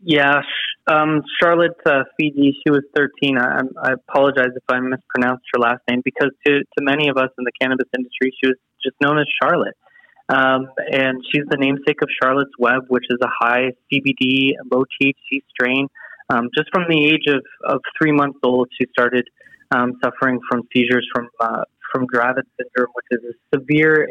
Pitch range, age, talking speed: 125-150 Hz, 20-39, 185 wpm